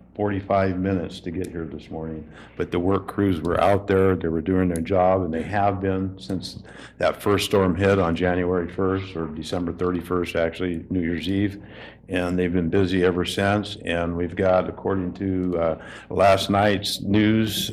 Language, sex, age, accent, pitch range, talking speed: English, male, 50-69, American, 90-105 Hz, 180 wpm